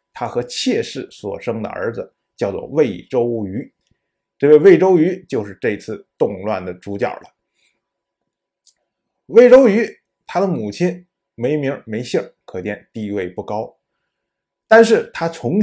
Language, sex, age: Chinese, male, 20-39